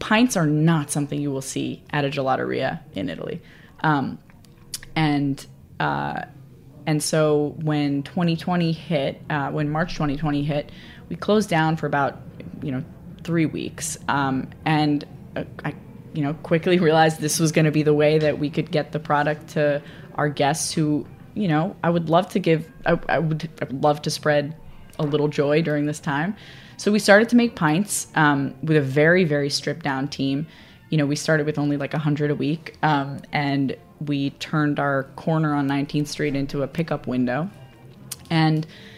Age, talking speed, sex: 20-39, 180 wpm, female